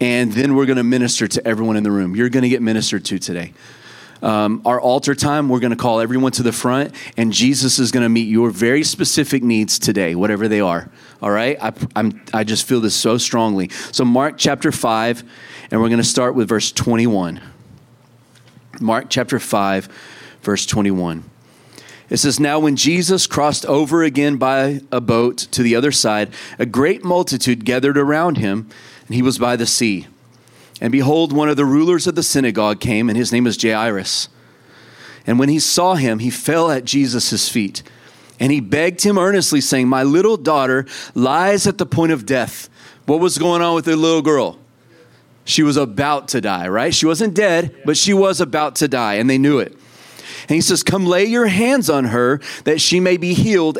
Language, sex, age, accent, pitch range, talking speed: English, male, 30-49, American, 115-150 Hz, 200 wpm